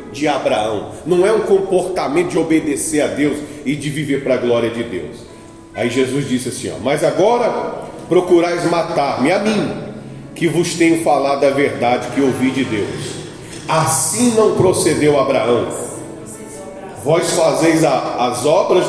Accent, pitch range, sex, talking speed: Brazilian, 140-200 Hz, male, 145 wpm